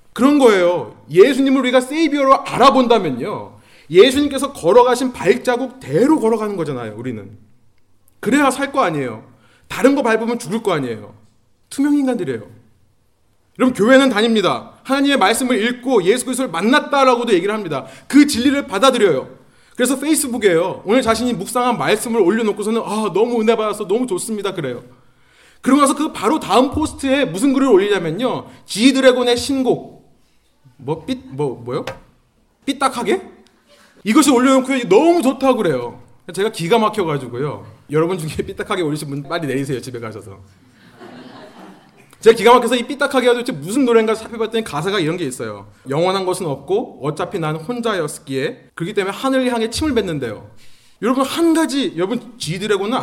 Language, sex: Korean, male